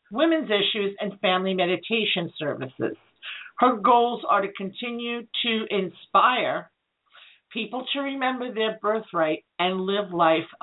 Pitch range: 185-240 Hz